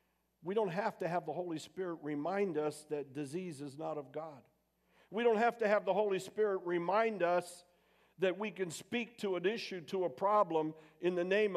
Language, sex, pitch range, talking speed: English, male, 150-210 Hz, 200 wpm